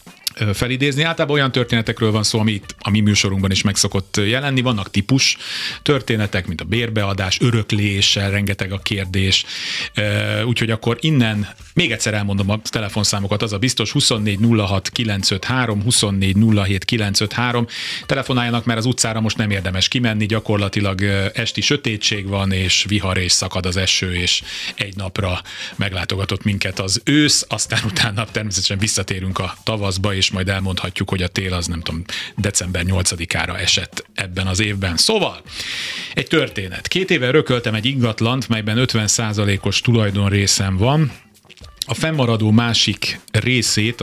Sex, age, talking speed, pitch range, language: male, 30-49, 135 wpm, 100-115 Hz, Hungarian